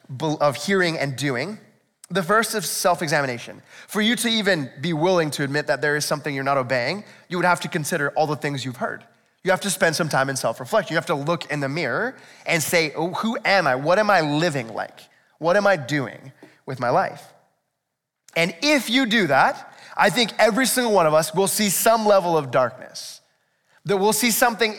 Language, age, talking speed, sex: English, 20-39, 210 wpm, male